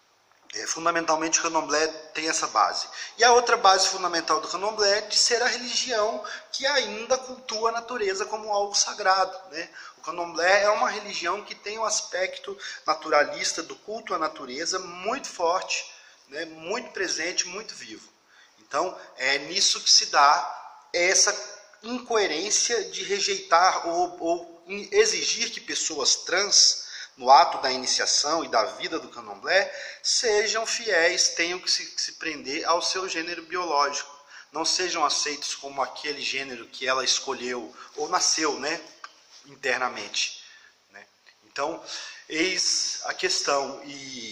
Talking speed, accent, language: 140 wpm, Brazilian, Portuguese